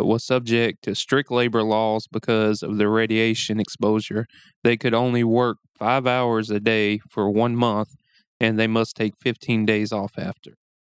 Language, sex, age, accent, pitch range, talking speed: English, male, 20-39, American, 110-130 Hz, 165 wpm